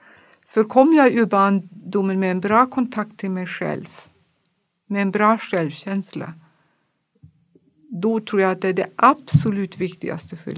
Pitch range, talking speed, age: 180-220 Hz, 145 wpm, 60-79